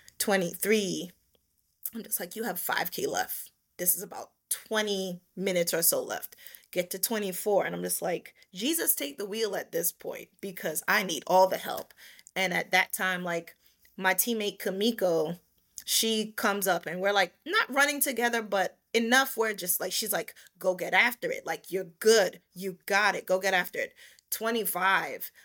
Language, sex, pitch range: English, female, 180-230 Hz